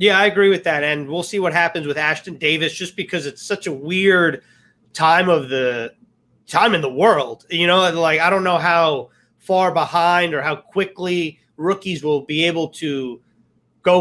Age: 30-49